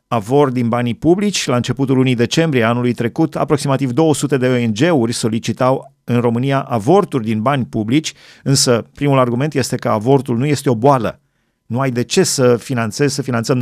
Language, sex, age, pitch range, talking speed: Romanian, male, 40-59, 120-150 Hz, 170 wpm